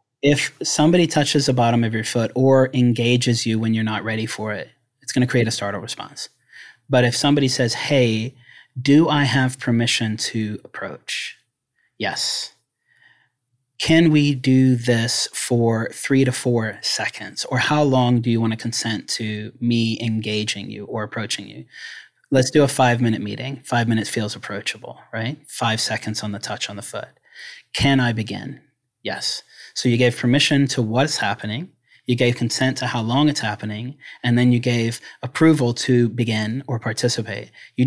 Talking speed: 170 wpm